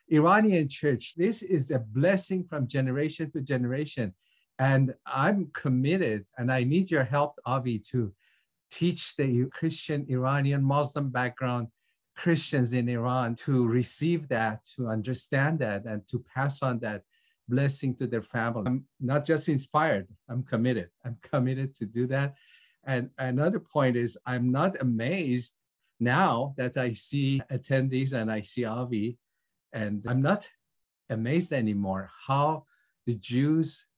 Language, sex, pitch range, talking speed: English, male, 115-140 Hz, 140 wpm